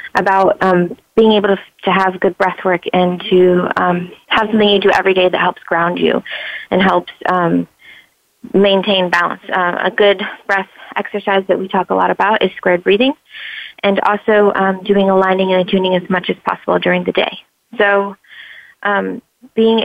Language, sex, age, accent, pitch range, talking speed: English, female, 20-39, American, 180-205 Hz, 180 wpm